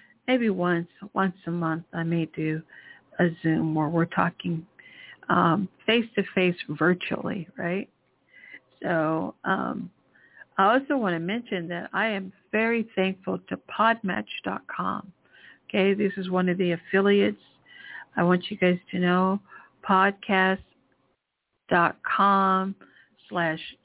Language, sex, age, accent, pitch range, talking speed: English, female, 60-79, American, 180-215 Hz, 115 wpm